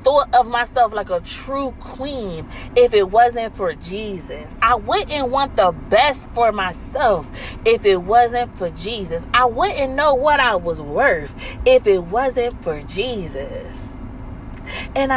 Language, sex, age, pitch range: English, female, 30-49, 185-255 Hz